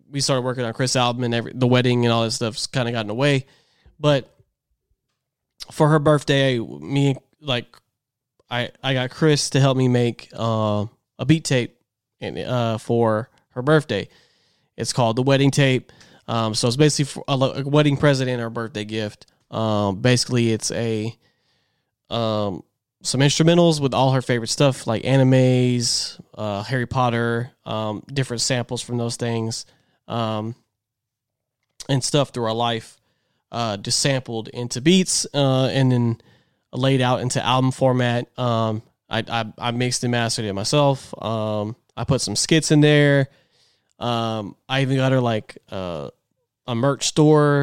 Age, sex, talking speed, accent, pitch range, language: 20-39, male, 160 wpm, American, 115-135 Hz, English